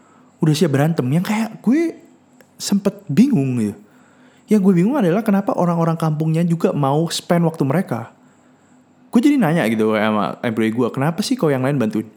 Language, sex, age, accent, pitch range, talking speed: Indonesian, male, 20-39, native, 130-205 Hz, 175 wpm